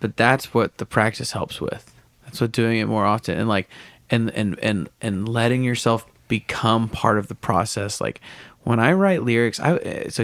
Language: English